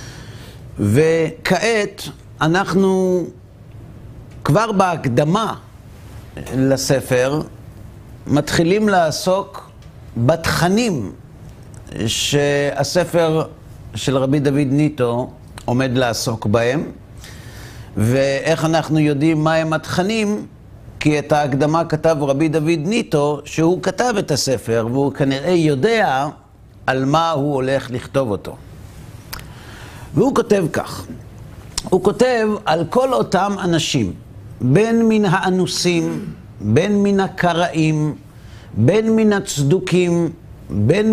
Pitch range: 120-190 Hz